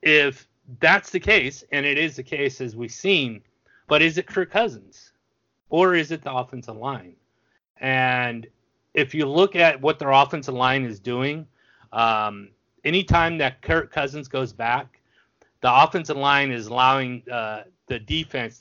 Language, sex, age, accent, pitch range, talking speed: English, male, 30-49, American, 125-155 Hz, 160 wpm